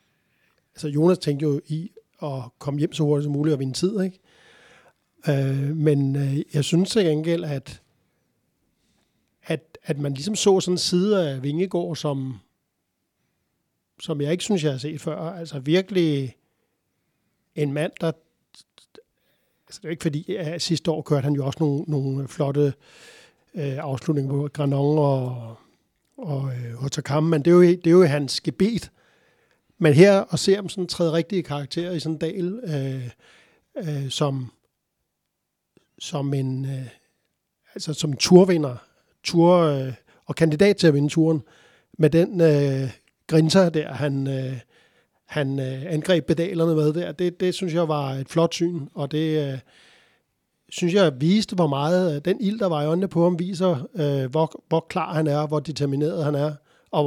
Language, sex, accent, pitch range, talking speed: Danish, male, native, 140-175 Hz, 165 wpm